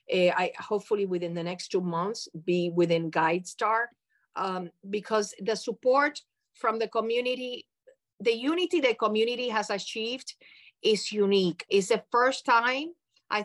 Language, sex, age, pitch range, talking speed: English, female, 40-59, 190-230 Hz, 140 wpm